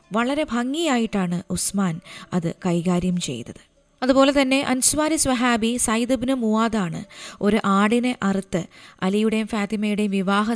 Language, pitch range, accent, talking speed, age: Malayalam, 185-235 Hz, native, 100 wpm, 20-39